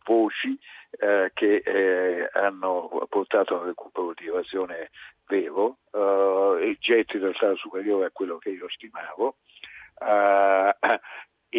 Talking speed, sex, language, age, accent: 125 wpm, male, Italian, 50-69, native